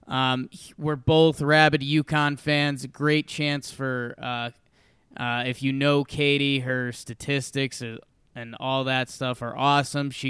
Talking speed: 140 wpm